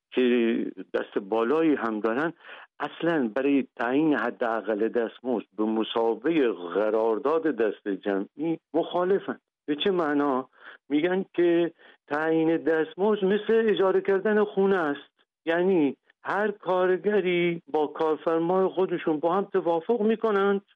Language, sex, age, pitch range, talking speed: Persian, male, 50-69, 120-200 Hz, 115 wpm